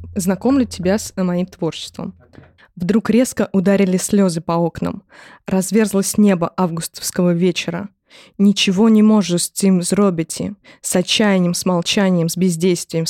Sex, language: female, Russian